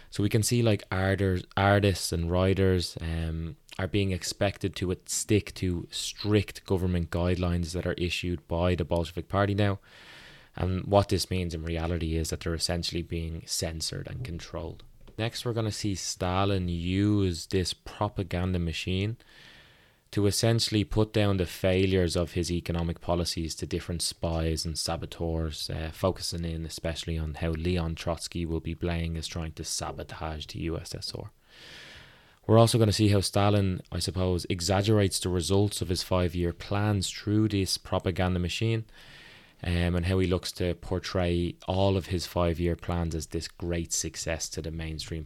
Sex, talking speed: male, 160 wpm